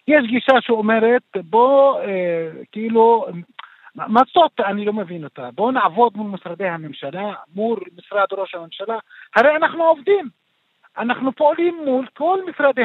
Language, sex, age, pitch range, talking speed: Hebrew, male, 50-69, 180-265 Hz, 130 wpm